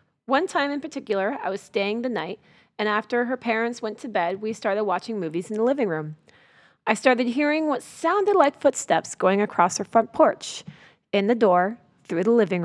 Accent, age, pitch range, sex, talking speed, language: American, 30-49, 205-260 Hz, female, 200 wpm, English